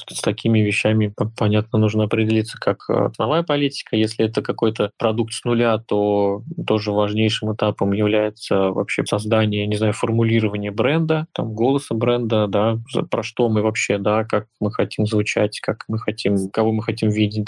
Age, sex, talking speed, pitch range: 20-39, male, 160 wpm, 105-120 Hz